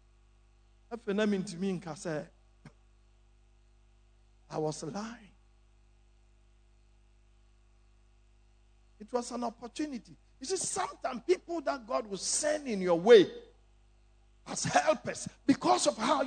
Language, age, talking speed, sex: English, 50-69, 85 wpm, male